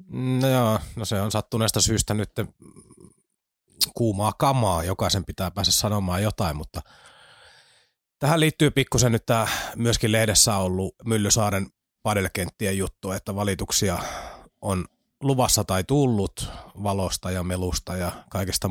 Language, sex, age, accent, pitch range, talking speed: Finnish, male, 30-49, native, 95-115 Hz, 125 wpm